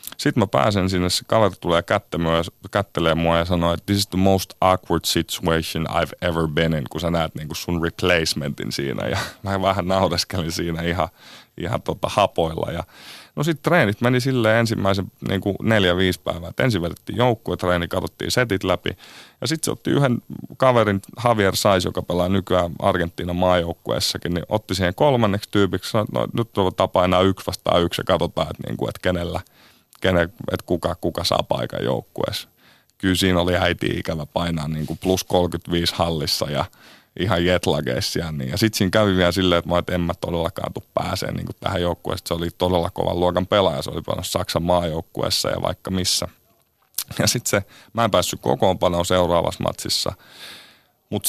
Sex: male